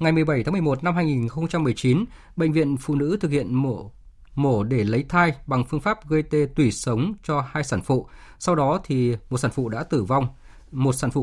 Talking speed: 215 wpm